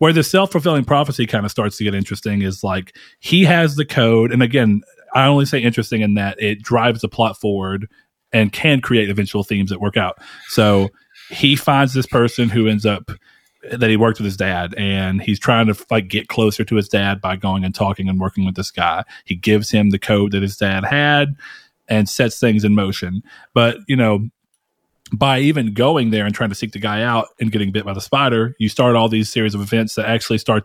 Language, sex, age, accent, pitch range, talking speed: English, male, 30-49, American, 100-120 Hz, 225 wpm